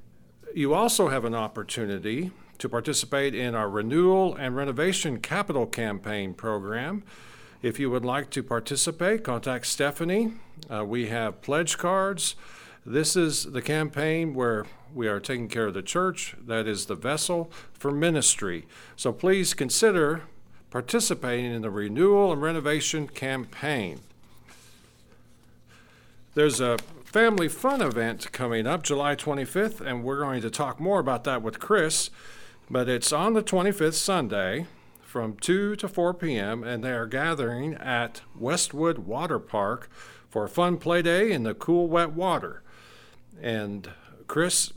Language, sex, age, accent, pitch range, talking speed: English, male, 50-69, American, 120-170 Hz, 140 wpm